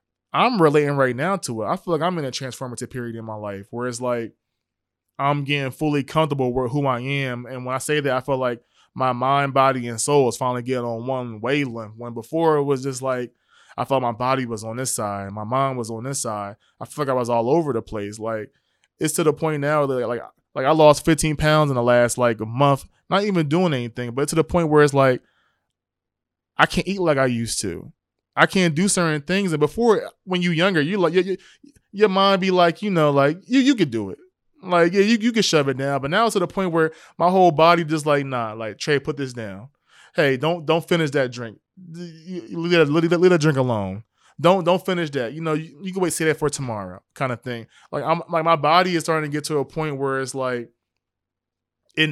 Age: 20-39